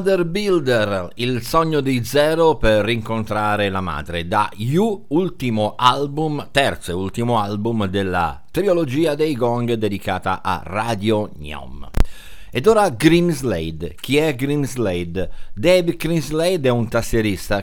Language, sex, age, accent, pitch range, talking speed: Italian, male, 50-69, native, 105-150 Hz, 125 wpm